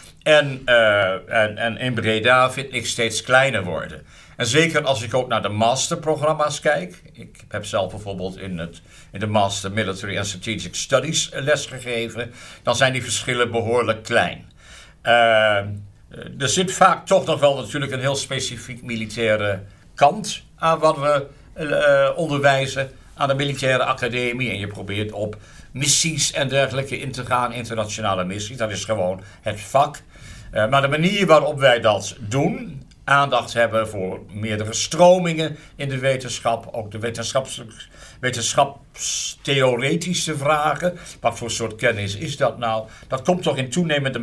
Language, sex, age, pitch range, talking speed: Dutch, male, 60-79, 110-150 Hz, 145 wpm